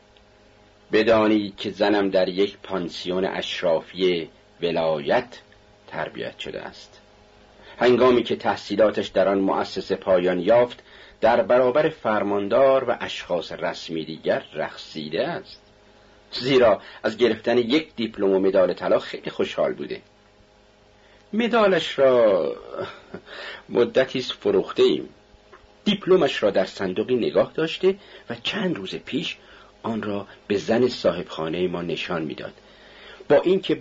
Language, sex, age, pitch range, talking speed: Persian, male, 50-69, 105-150 Hz, 115 wpm